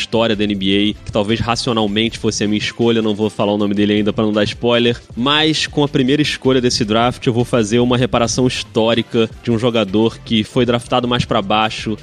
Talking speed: 215 wpm